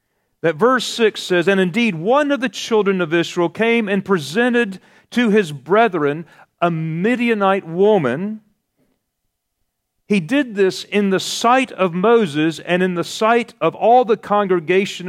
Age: 40-59